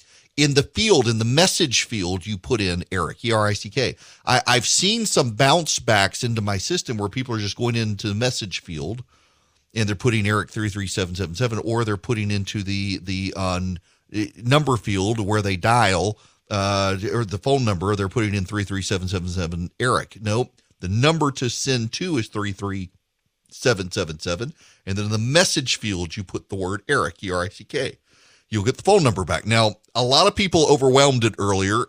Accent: American